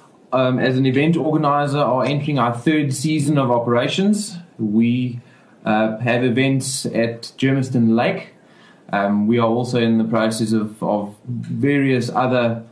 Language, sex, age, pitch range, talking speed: English, male, 20-39, 110-130 Hz, 140 wpm